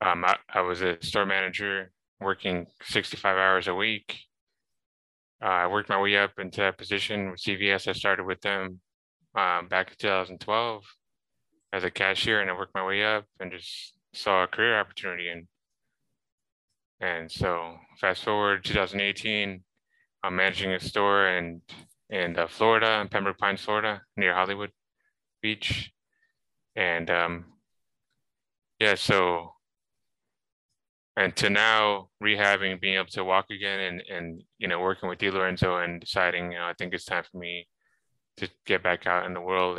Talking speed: 155 wpm